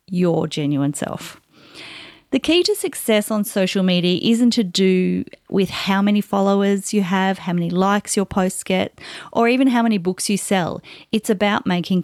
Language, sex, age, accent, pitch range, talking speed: English, female, 30-49, Australian, 185-245 Hz, 175 wpm